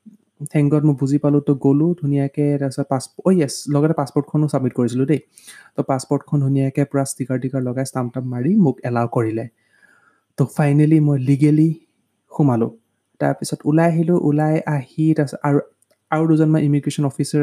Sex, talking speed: male, 105 wpm